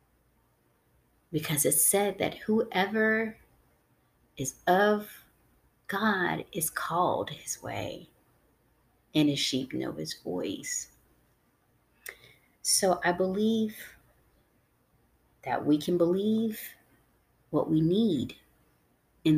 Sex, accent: female, American